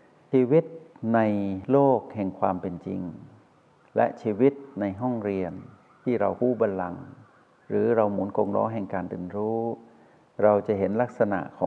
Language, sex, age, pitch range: Thai, male, 60-79, 95-120 Hz